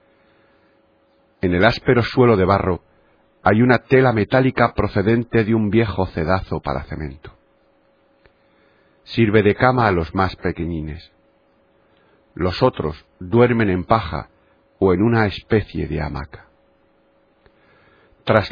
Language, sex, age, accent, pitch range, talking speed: Spanish, male, 50-69, Spanish, 85-115 Hz, 115 wpm